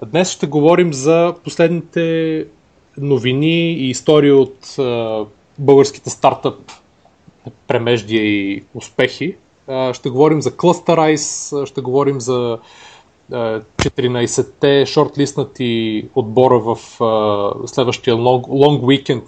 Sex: male